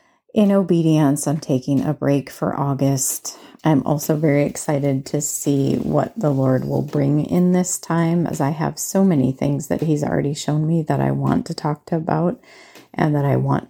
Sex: female